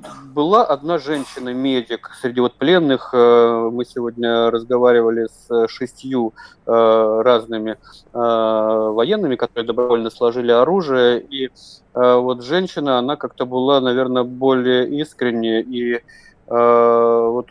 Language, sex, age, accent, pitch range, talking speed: Russian, male, 20-39, native, 115-130 Hz, 95 wpm